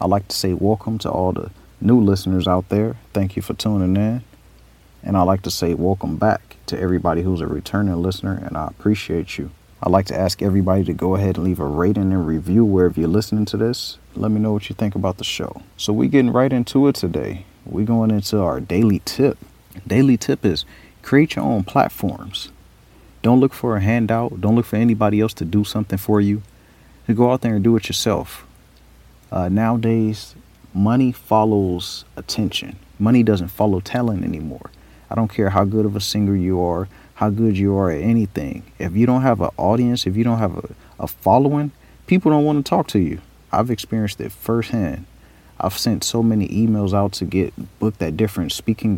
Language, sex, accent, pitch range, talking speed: English, male, American, 90-110 Hz, 205 wpm